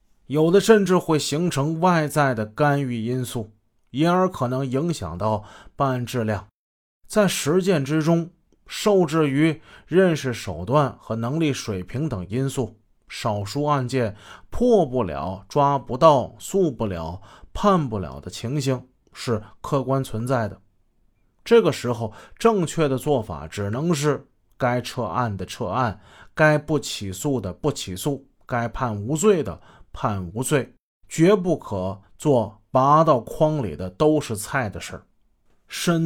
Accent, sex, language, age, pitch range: native, male, Chinese, 30-49, 110-155 Hz